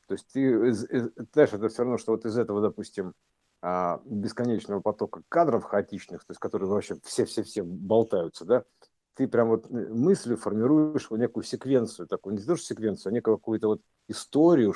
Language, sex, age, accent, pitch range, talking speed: Russian, male, 50-69, native, 90-120 Hz, 165 wpm